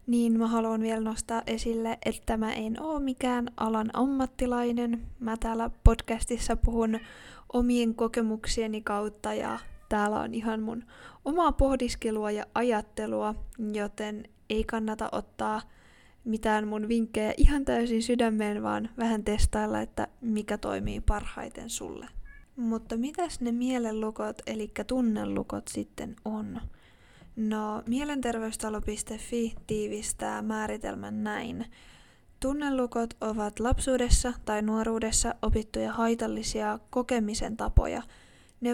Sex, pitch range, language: female, 215-240 Hz, Finnish